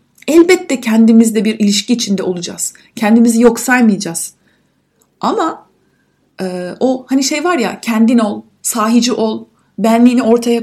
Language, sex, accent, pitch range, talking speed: Turkish, female, native, 210-275 Hz, 125 wpm